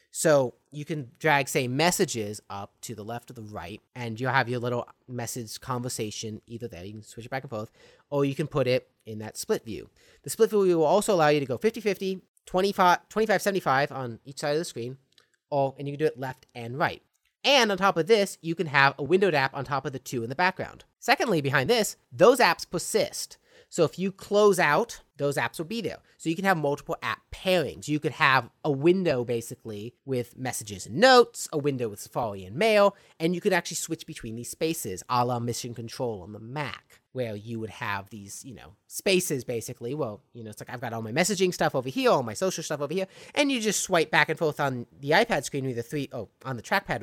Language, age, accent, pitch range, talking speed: English, 30-49, American, 120-175 Hz, 230 wpm